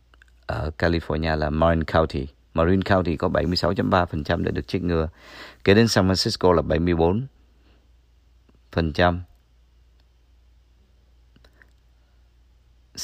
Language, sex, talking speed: Vietnamese, male, 85 wpm